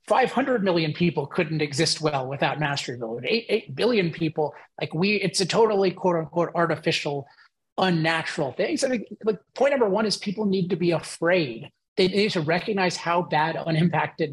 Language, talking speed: English, 180 wpm